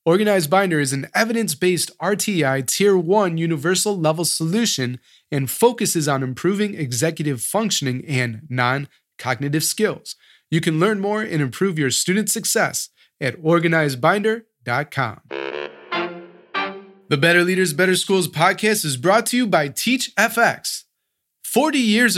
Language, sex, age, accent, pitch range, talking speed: English, male, 20-39, American, 140-200 Hz, 125 wpm